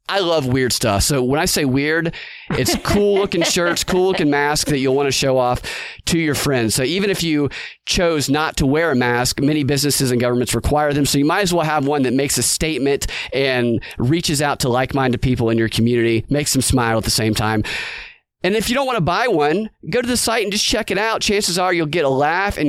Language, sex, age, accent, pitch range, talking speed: English, male, 30-49, American, 130-165 Hz, 240 wpm